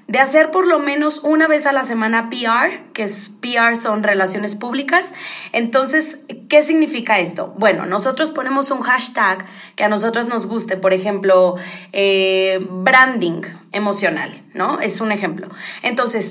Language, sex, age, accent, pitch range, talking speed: Spanish, female, 20-39, Mexican, 205-270 Hz, 150 wpm